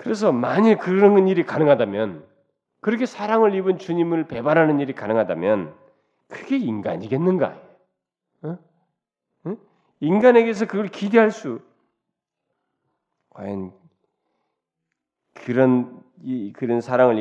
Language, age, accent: Korean, 40-59, native